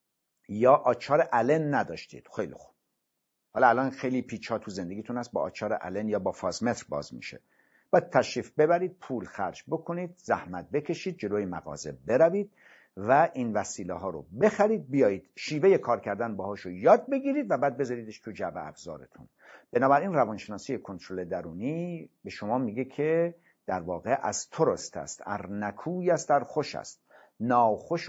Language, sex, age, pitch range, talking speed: Persian, male, 50-69, 120-170 Hz, 155 wpm